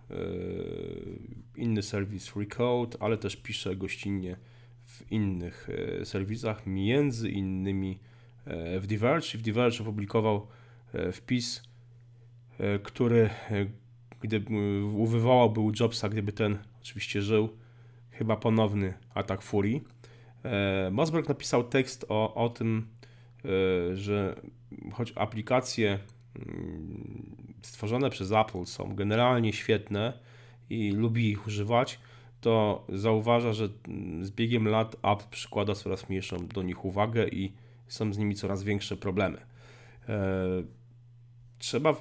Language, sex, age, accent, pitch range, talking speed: Polish, male, 30-49, native, 100-120 Hz, 105 wpm